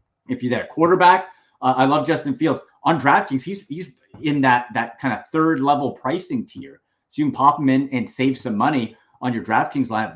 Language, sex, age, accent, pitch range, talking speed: English, male, 30-49, American, 120-175 Hz, 220 wpm